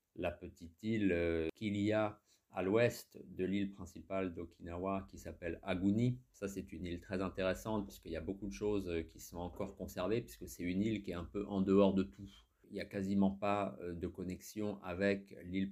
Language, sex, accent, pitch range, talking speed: French, male, French, 90-105 Hz, 200 wpm